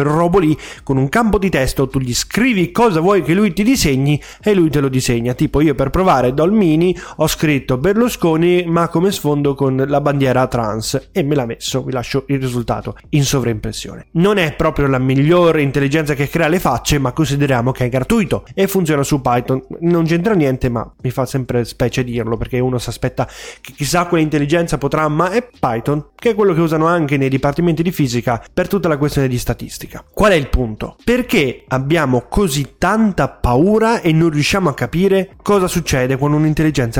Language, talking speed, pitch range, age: Italian, 195 wpm, 135-185 Hz, 20-39